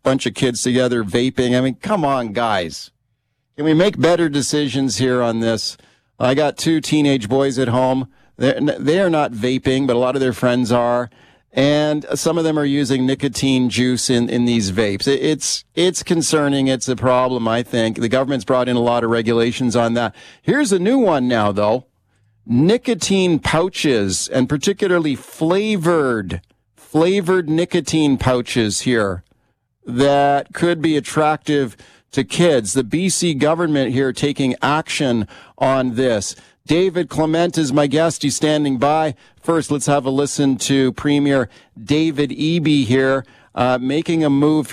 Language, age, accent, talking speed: English, 40-59, American, 155 wpm